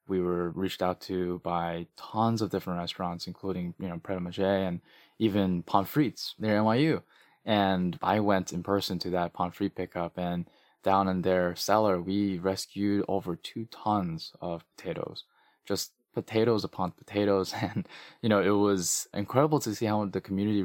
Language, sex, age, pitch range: English, male, 20-39, 90-100 Hz